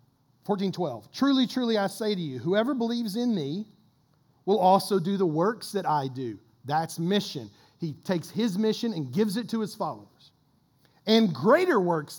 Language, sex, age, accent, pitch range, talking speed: English, male, 40-59, American, 135-200 Hz, 160 wpm